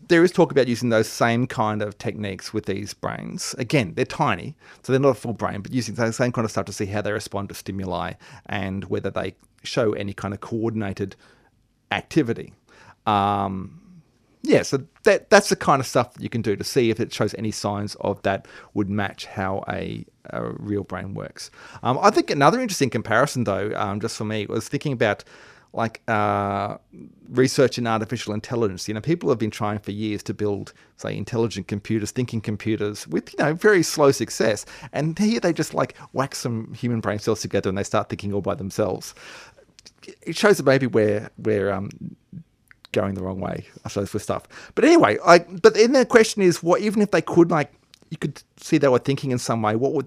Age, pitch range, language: 30-49, 100-135 Hz, English